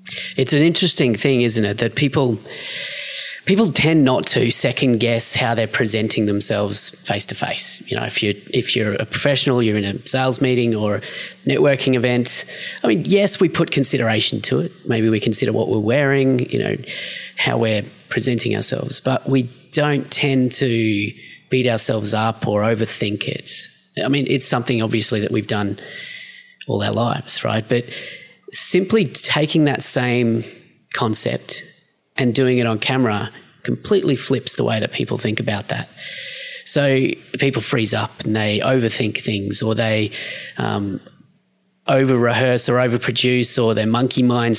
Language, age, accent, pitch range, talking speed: English, 30-49, Australian, 115-150 Hz, 160 wpm